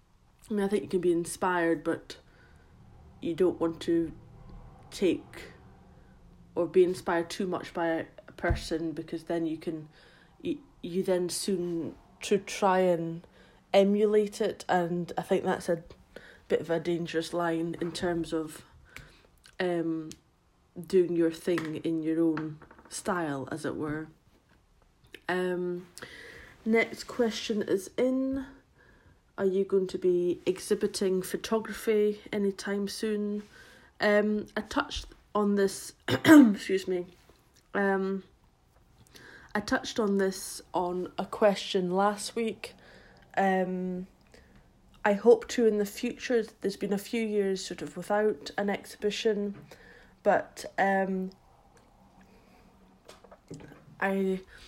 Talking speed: 120 wpm